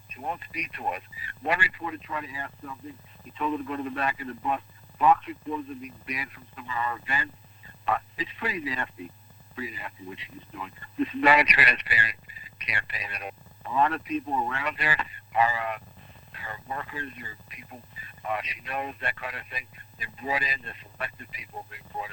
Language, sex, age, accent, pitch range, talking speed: English, male, 60-79, American, 110-150 Hz, 210 wpm